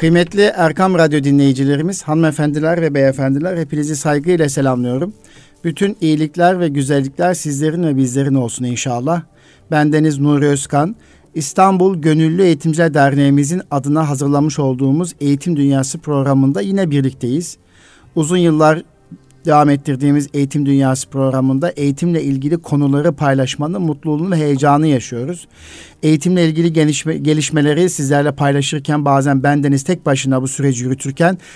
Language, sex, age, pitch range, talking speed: Turkish, male, 50-69, 140-170 Hz, 115 wpm